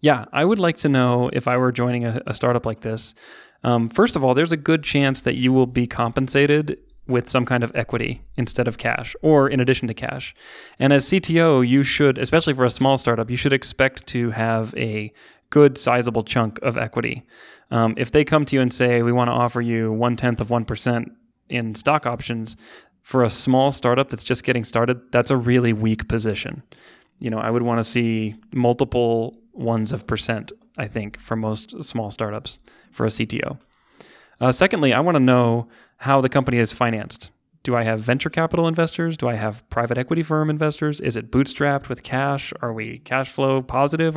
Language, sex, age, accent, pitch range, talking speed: English, male, 20-39, American, 115-140 Hz, 200 wpm